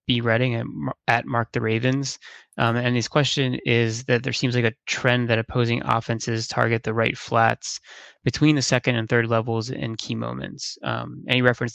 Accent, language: American, English